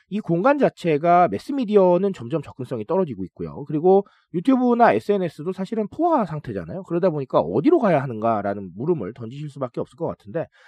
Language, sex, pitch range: Korean, male, 130-210 Hz